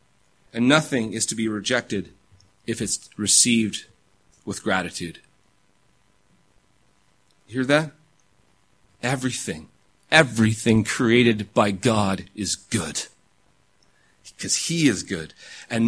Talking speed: 100 wpm